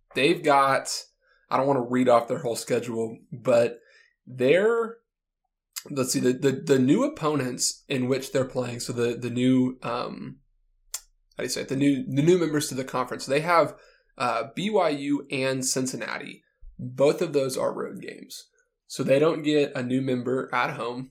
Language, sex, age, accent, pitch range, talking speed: English, male, 20-39, American, 125-145 Hz, 180 wpm